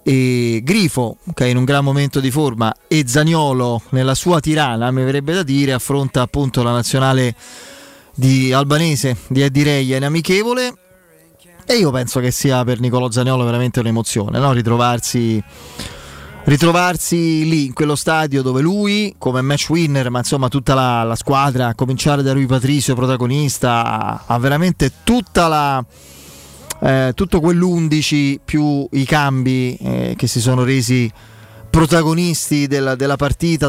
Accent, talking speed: native, 150 wpm